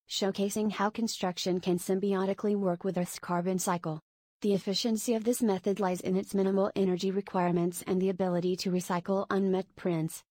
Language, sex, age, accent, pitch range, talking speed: English, female, 30-49, American, 180-200 Hz, 165 wpm